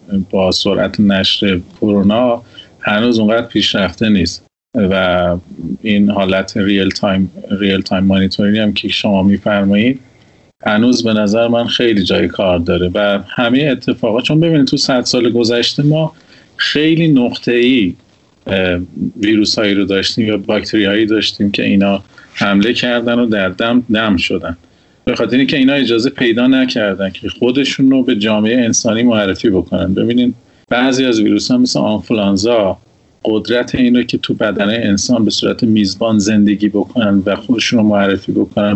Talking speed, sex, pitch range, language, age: 140 wpm, male, 100-120 Hz, Persian, 40-59